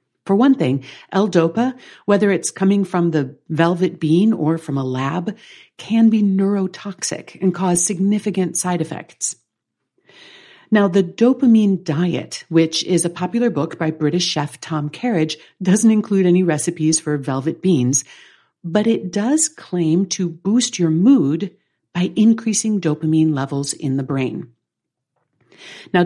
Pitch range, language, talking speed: 160-220 Hz, English, 140 wpm